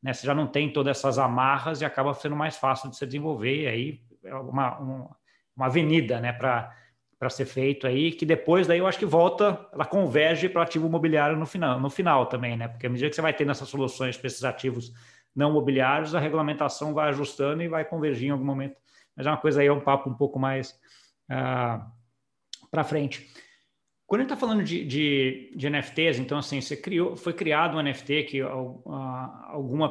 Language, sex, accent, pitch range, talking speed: Portuguese, male, Brazilian, 130-160 Hz, 205 wpm